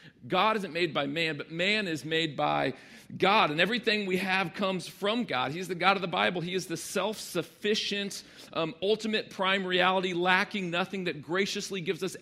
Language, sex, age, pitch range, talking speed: English, male, 40-59, 150-195 Hz, 185 wpm